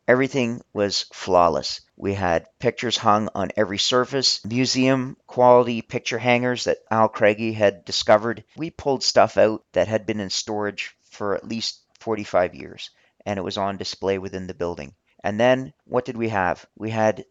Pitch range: 95-115 Hz